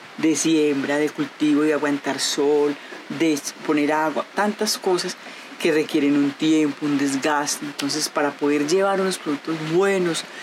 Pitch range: 145-170 Hz